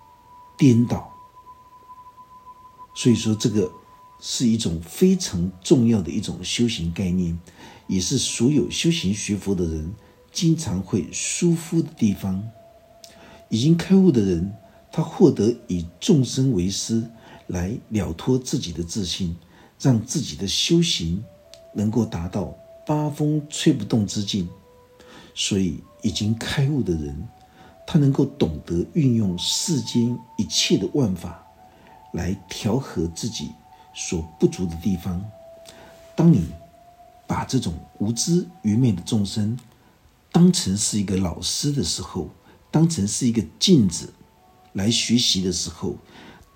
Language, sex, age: Chinese, male, 50-69